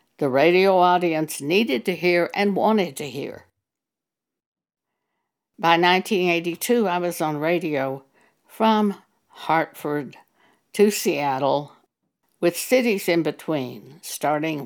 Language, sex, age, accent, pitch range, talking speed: English, female, 60-79, American, 155-195 Hz, 100 wpm